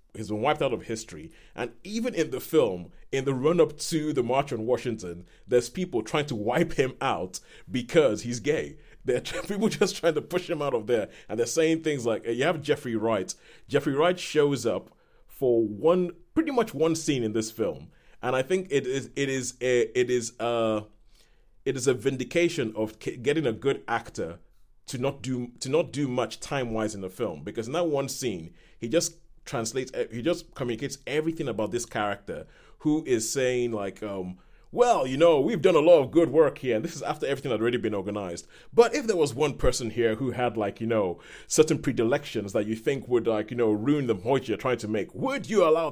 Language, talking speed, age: English, 215 wpm, 30-49